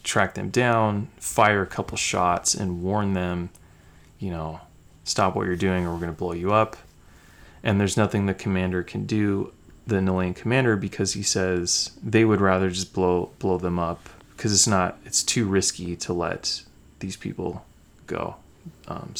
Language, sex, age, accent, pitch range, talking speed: English, male, 30-49, American, 95-120 Hz, 170 wpm